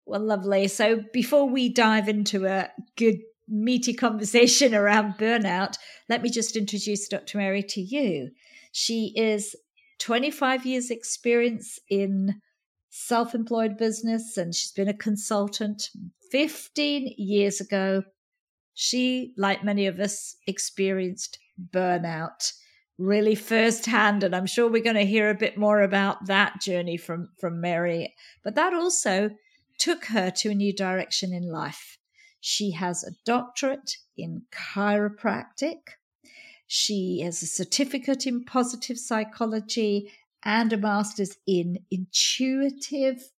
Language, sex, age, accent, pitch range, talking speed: English, female, 50-69, British, 195-240 Hz, 125 wpm